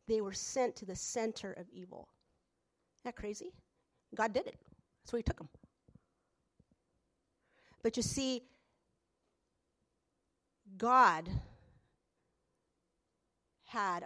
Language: English